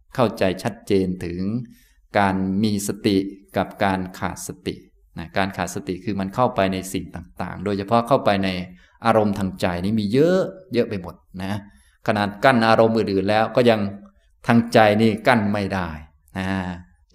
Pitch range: 95-115 Hz